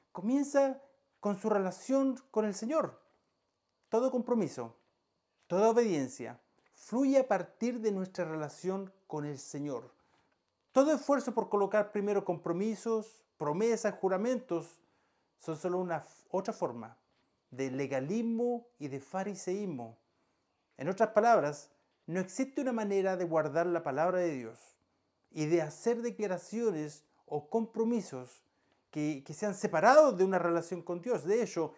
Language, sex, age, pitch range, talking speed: Spanish, male, 40-59, 160-235 Hz, 130 wpm